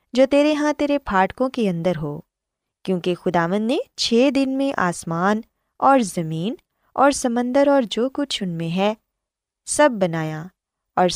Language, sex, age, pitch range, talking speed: Urdu, female, 20-39, 180-270 Hz, 150 wpm